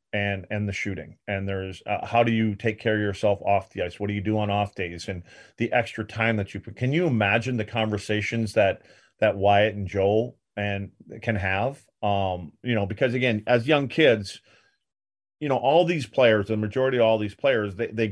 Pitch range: 100-115 Hz